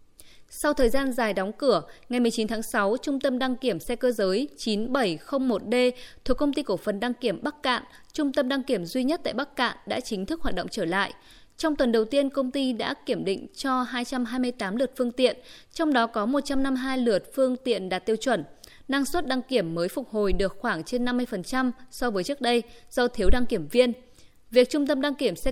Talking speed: 220 wpm